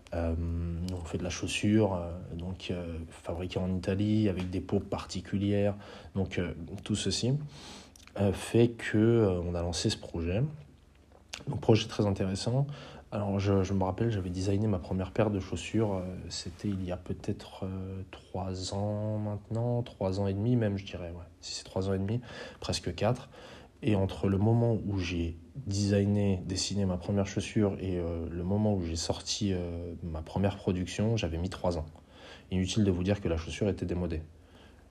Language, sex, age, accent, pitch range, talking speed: French, male, 20-39, French, 85-100 Hz, 180 wpm